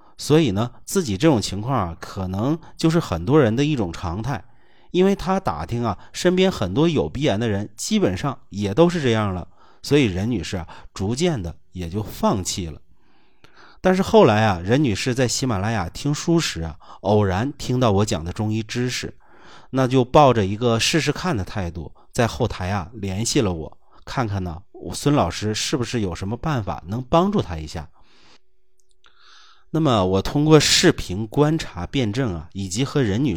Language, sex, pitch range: Chinese, male, 95-145 Hz